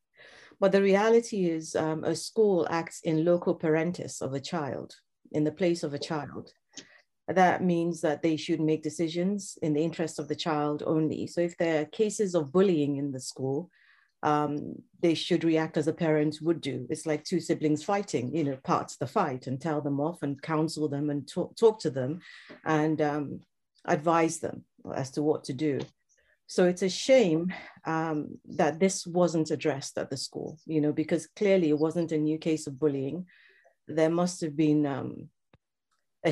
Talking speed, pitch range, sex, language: 190 wpm, 150-175 Hz, female, English